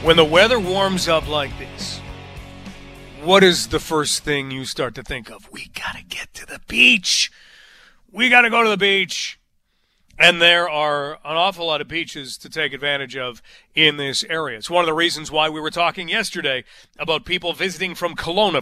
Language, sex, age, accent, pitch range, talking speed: English, male, 40-59, American, 155-205 Hz, 195 wpm